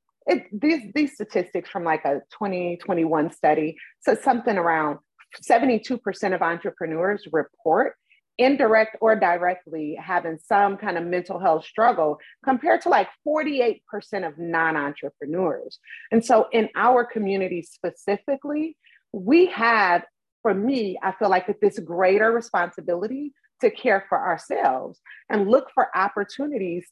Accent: American